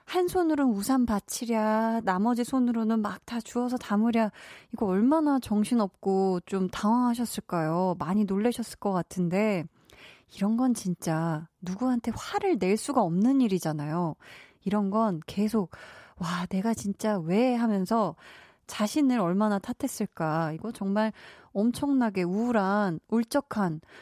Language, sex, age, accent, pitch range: Korean, female, 20-39, native, 190-240 Hz